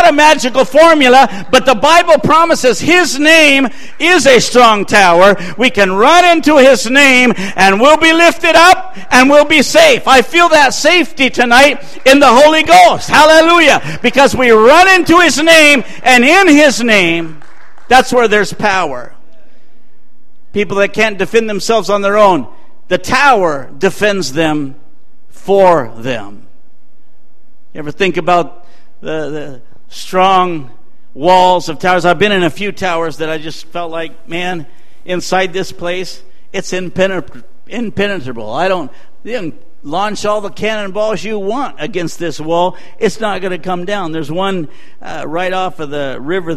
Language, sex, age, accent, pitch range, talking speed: English, male, 60-79, American, 165-255 Hz, 155 wpm